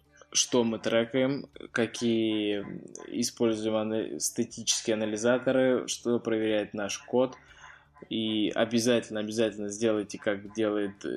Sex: male